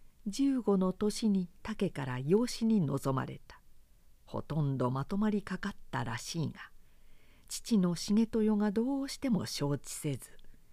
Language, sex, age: Japanese, female, 50-69